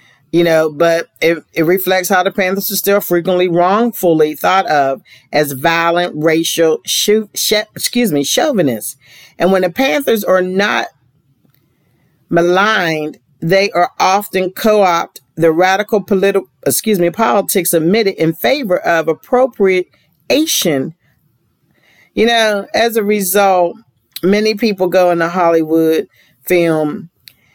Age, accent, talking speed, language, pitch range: 40-59, American, 125 wpm, English, 155-195 Hz